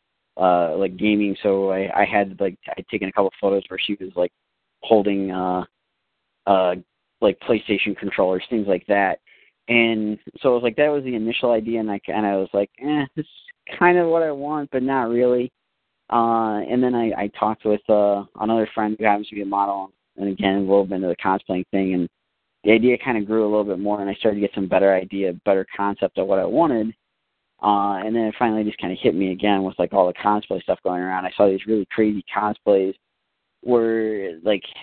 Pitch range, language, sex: 95-110 Hz, English, male